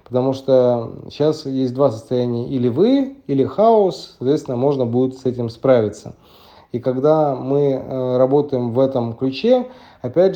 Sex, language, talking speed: male, Russian, 140 wpm